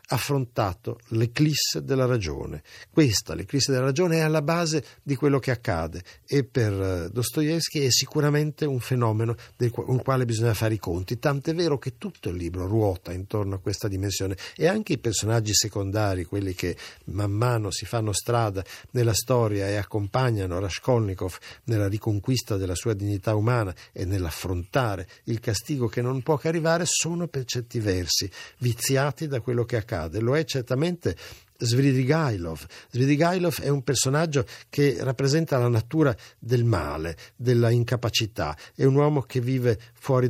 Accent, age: native, 60-79